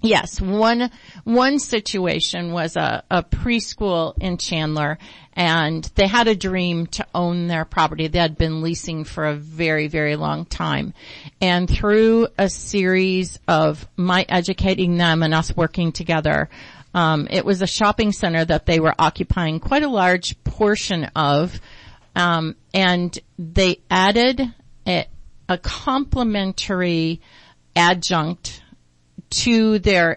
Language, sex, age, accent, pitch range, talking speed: English, female, 50-69, American, 155-185 Hz, 130 wpm